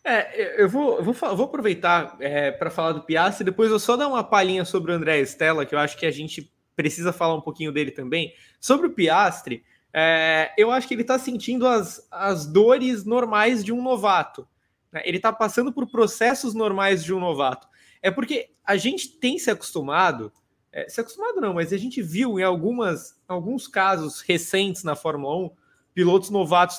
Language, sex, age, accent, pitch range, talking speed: Portuguese, male, 20-39, Brazilian, 160-225 Hz, 175 wpm